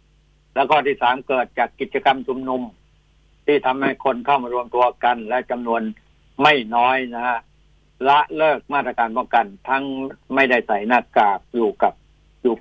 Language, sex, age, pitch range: Thai, male, 60-79, 115-135 Hz